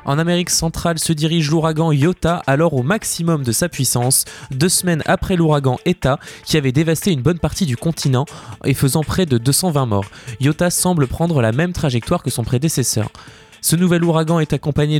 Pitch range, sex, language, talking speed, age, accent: 130-165 Hz, male, French, 185 wpm, 20-39, French